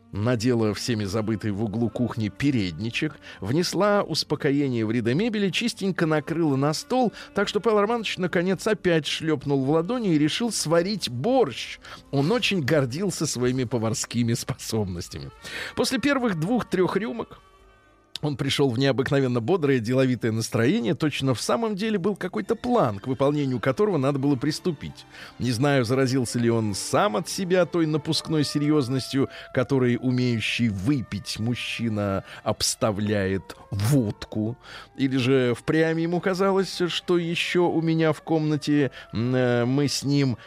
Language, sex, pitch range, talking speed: Russian, male, 120-175 Hz, 135 wpm